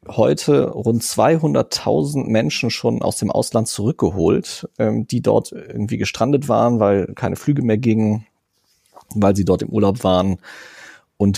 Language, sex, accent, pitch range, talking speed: German, male, German, 100-130 Hz, 135 wpm